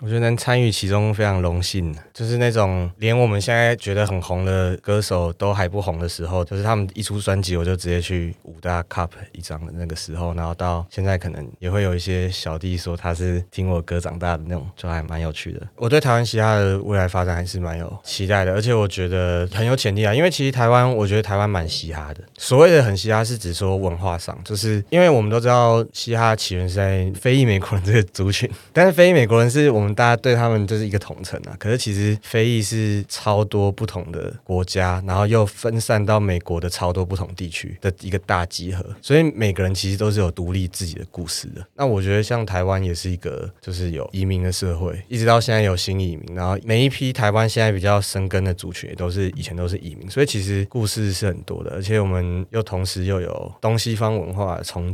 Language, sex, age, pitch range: Chinese, male, 20-39, 90-110 Hz